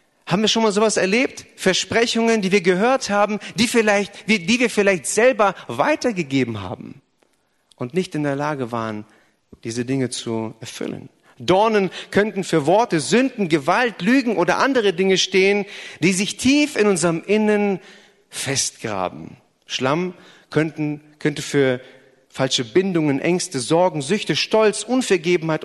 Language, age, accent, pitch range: German, 40-59, German, 145-205 Hz